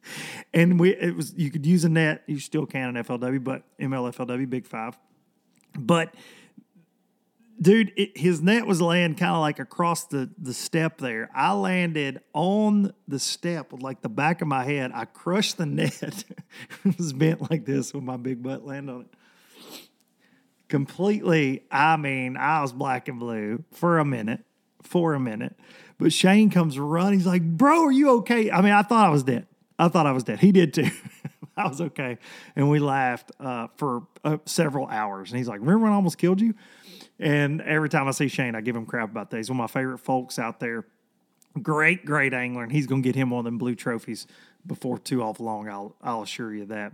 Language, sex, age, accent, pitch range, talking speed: English, male, 40-59, American, 130-185 Hz, 210 wpm